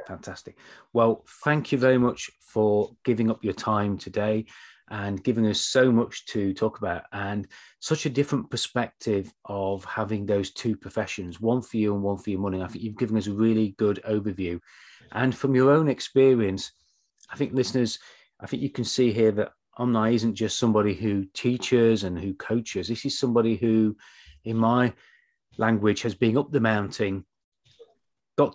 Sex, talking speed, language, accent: male, 175 wpm, English, British